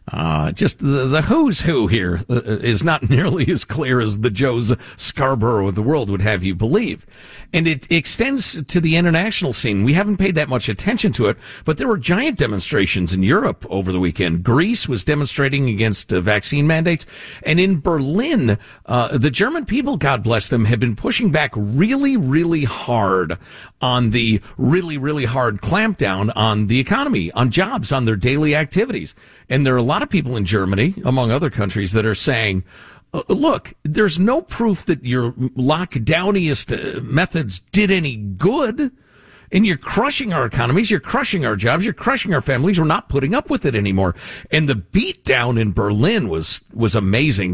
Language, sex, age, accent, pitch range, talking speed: English, male, 50-69, American, 110-170 Hz, 180 wpm